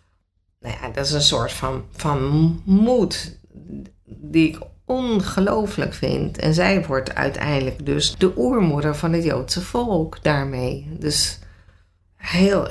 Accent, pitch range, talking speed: Dutch, 145-190 Hz, 125 wpm